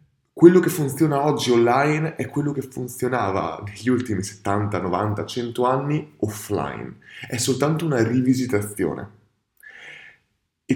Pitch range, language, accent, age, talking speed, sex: 95-125 Hz, Italian, native, 20-39, 115 wpm, male